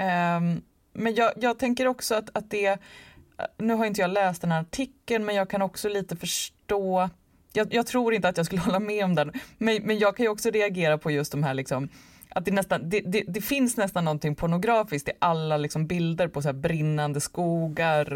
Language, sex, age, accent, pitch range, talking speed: English, female, 20-39, Swedish, 155-215 Hz, 210 wpm